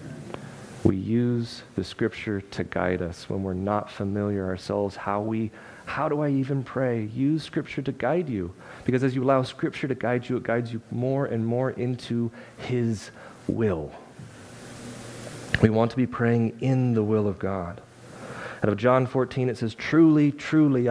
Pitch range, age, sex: 115-145 Hz, 40-59, male